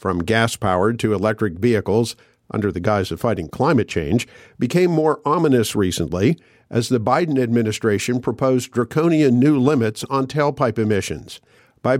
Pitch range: 110-135 Hz